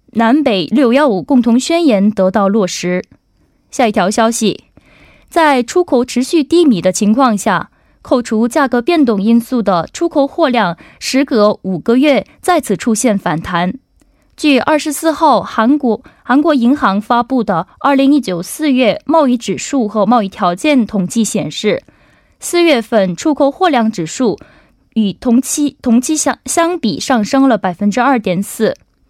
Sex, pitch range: female, 210-290 Hz